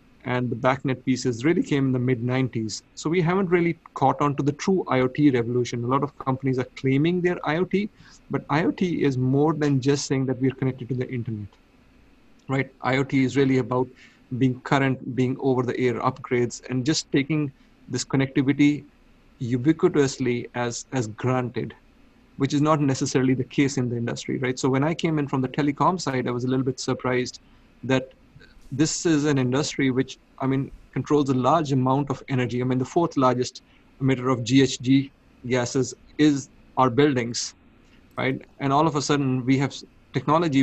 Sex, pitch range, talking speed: male, 125-145 Hz, 180 wpm